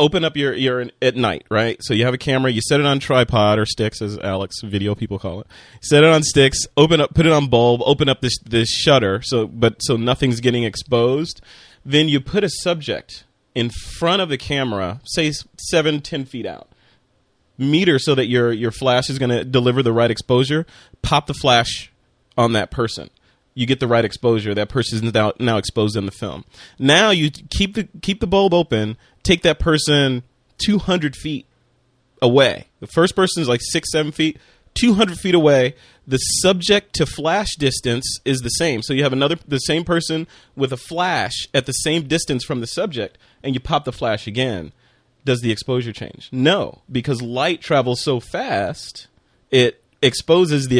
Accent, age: American, 30-49